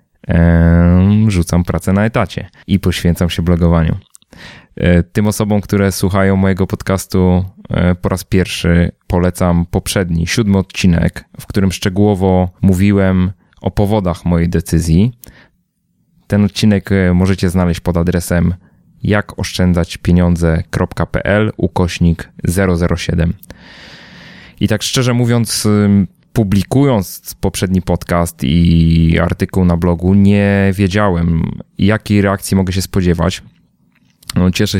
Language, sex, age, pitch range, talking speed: Polish, male, 20-39, 90-105 Hz, 100 wpm